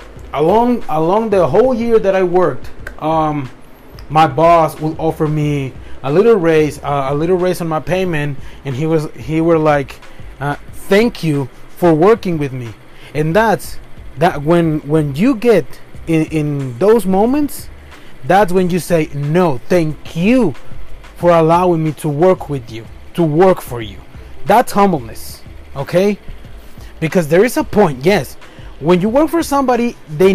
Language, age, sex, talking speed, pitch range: English, 30-49, male, 160 wpm, 150-200 Hz